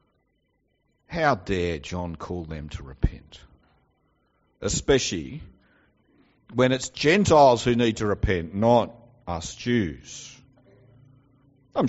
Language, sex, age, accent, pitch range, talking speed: English, male, 50-69, Australian, 90-130 Hz, 95 wpm